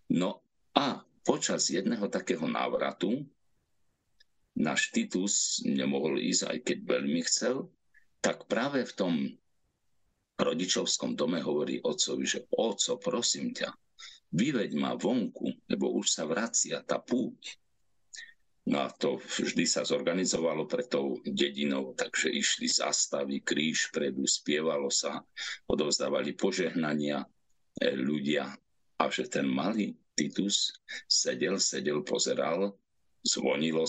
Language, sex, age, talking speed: Slovak, male, 50-69, 110 wpm